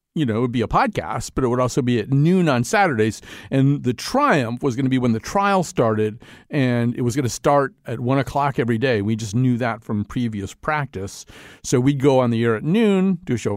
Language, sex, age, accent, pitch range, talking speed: English, male, 40-59, American, 120-190 Hz, 250 wpm